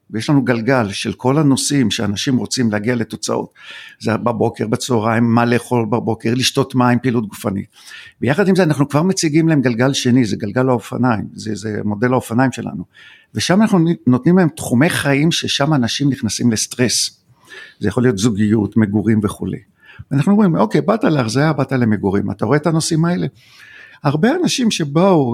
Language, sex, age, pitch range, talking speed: Hebrew, male, 50-69, 120-155 Hz, 160 wpm